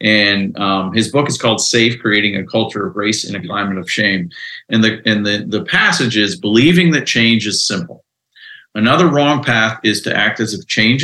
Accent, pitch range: American, 110-125 Hz